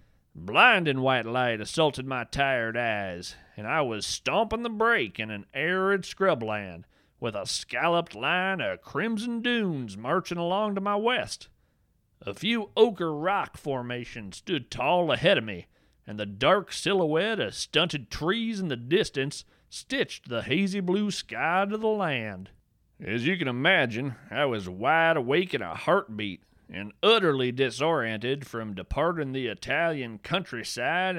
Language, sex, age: English, male, 40-59